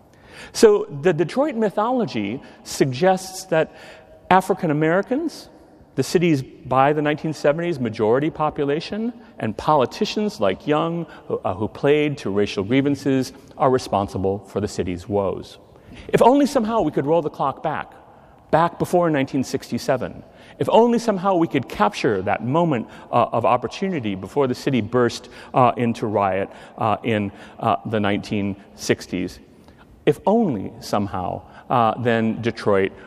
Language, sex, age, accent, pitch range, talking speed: English, male, 40-59, American, 100-160 Hz, 130 wpm